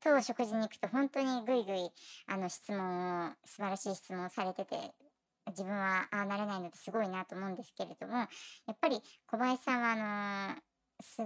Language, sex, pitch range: Japanese, male, 190-240 Hz